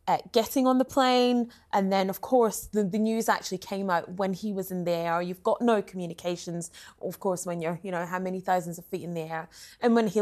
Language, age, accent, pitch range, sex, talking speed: English, 20-39, British, 180-225 Hz, female, 245 wpm